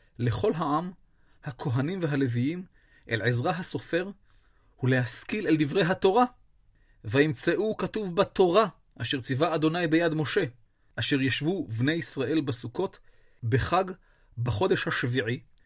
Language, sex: Hebrew, male